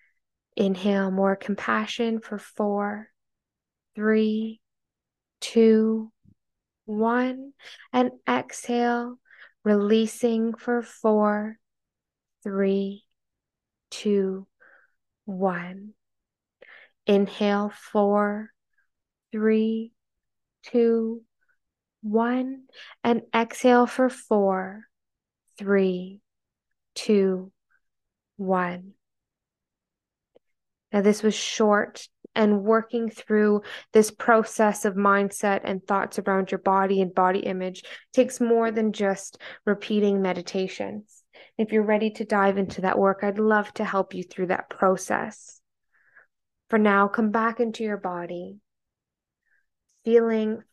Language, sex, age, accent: English, female, 10-29, American